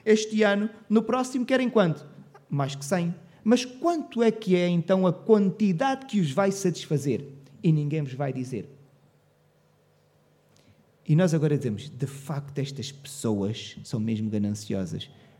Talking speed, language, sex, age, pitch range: 145 wpm, Portuguese, male, 30-49, 135-200 Hz